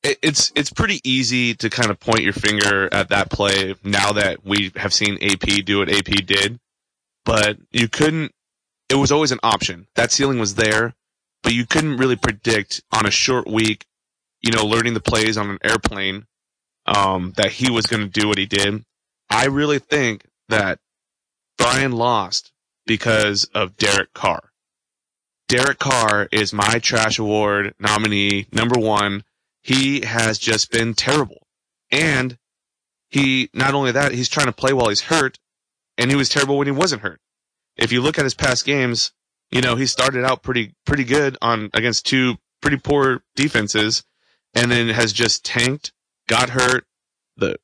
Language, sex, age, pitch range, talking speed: English, male, 30-49, 105-130 Hz, 170 wpm